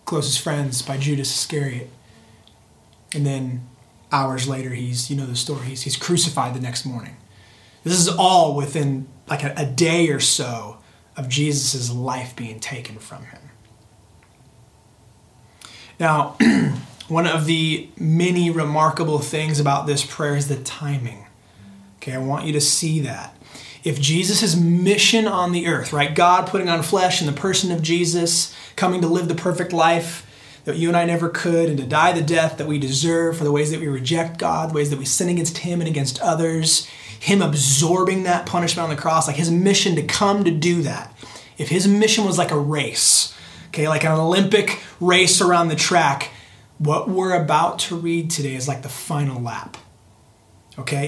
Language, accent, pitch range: English, American, 130-170 Hz